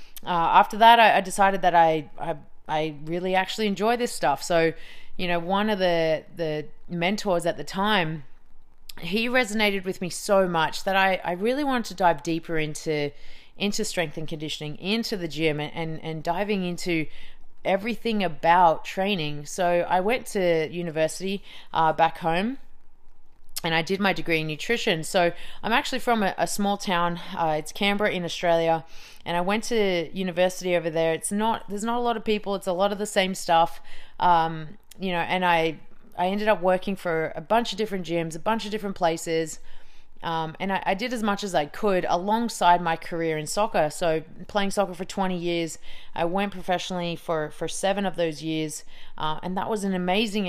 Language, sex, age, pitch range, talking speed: English, female, 30-49, 165-200 Hz, 190 wpm